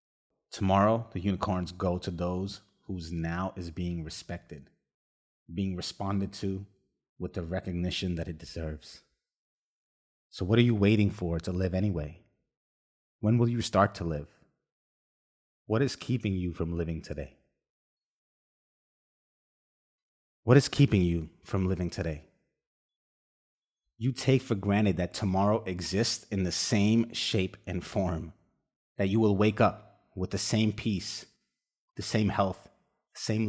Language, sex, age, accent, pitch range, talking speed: English, male, 30-49, American, 85-105 Hz, 135 wpm